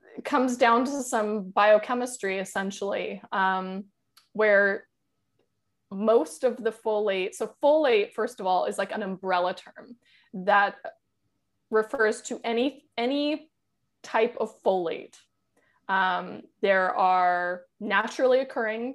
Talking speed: 110 wpm